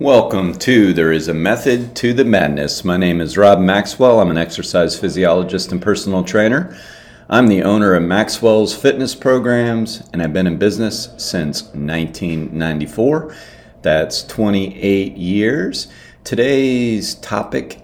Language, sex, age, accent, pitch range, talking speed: English, male, 40-59, American, 85-105 Hz, 135 wpm